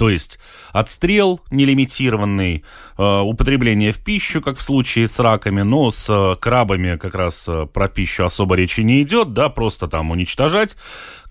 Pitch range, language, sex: 90-130 Hz, Russian, male